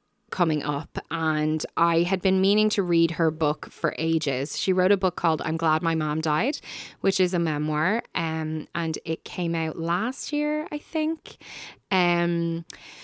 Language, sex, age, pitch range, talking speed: English, female, 10-29, 160-200 Hz, 170 wpm